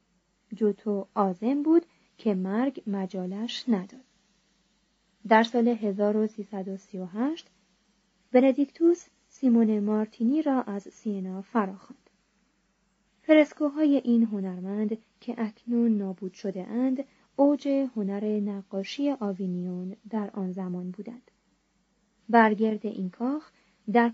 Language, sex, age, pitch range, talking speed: Persian, female, 20-39, 195-240 Hz, 90 wpm